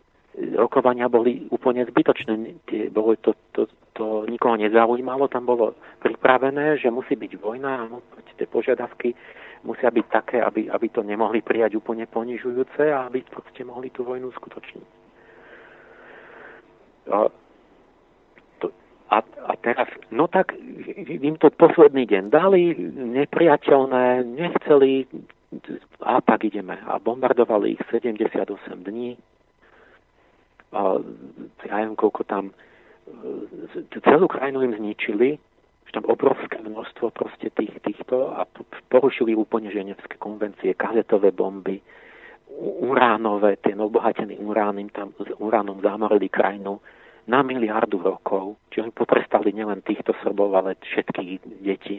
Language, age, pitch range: Slovak, 50-69, 105-135 Hz